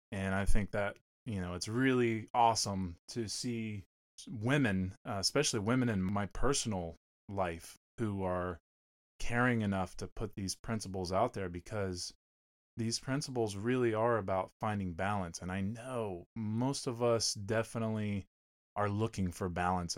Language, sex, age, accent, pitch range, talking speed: English, male, 20-39, American, 90-110 Hz, 140 wpm